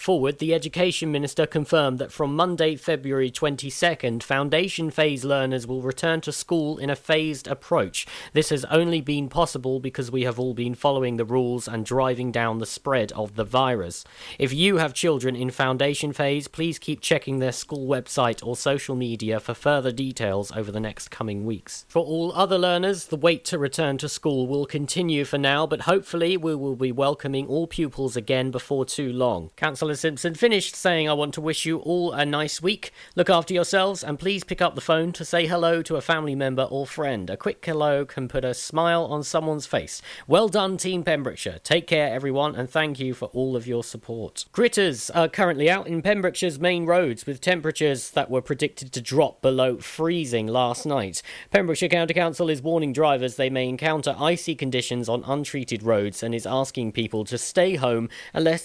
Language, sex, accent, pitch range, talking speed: English, male, British, 130-165 Hz, 195 wpm